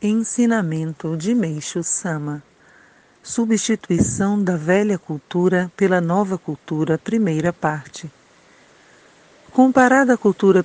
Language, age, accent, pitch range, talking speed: Portuguese, 50-69, Brazilian, 165-200 Hz, 90 wpm